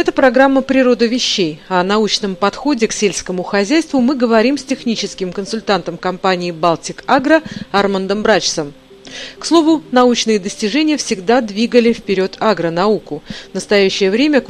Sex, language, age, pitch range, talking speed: female, Russian, 40-59, 185-245 Hz, 130 wpm